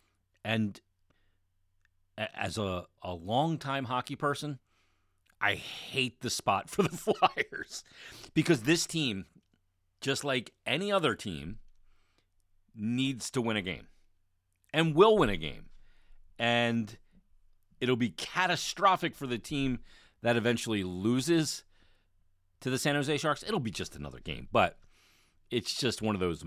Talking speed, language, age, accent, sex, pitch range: 130 wpm, English, 40-59, American, male, 90-120 Hz